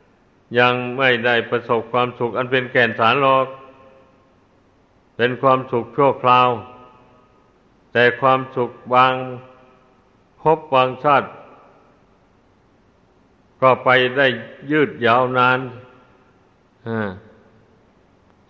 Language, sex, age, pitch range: Thai, male, 60-79, 110-130 Hz